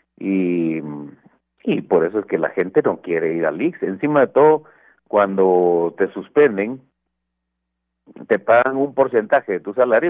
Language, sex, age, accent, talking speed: Spanish, male, 50-69, Mexican, 155 wpm